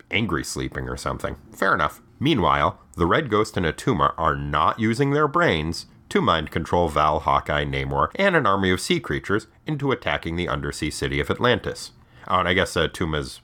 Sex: male